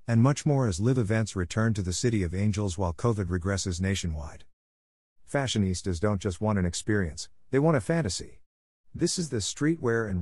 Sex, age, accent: male, 50-69, American